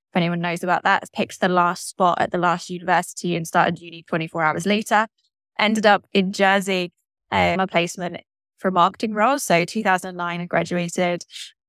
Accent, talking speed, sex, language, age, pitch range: British, 165 wpm, female, English, 10-29, 170-195 Hz